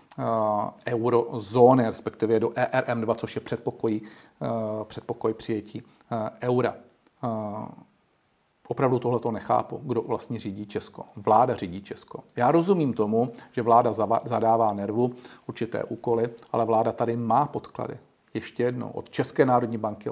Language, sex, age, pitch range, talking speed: Czech, male, 40-59, 110-125 Hz, 120 wpm